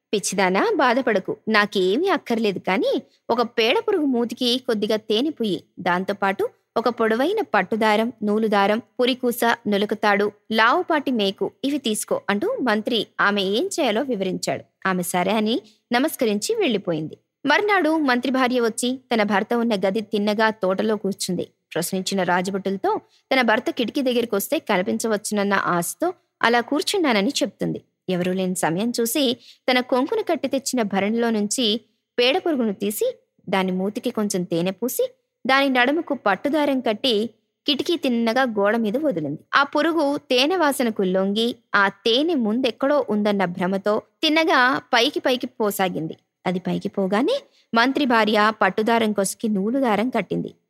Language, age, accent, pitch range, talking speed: Telugu, 20-39, native, 205-270 Hz, 130 wpm